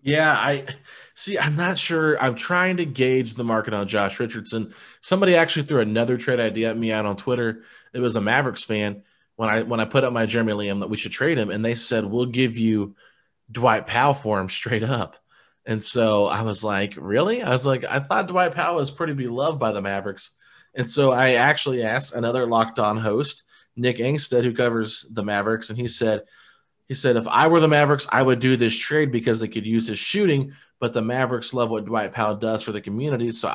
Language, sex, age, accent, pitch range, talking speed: English, male, 20-39, American, 110-140 Hz, 220 wpm